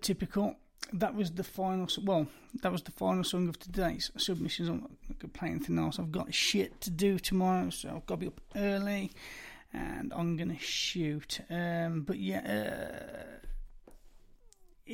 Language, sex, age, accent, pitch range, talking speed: English, male, 30-49, British, 170-210 Hz, 165 wpm